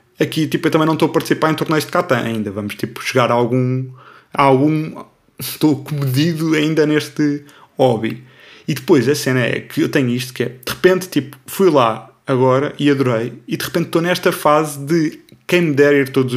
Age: 20-39